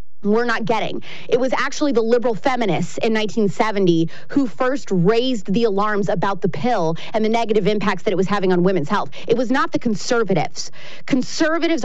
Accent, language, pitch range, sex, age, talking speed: American, English, 200-245 Hz, female, 30-49, 180 wpm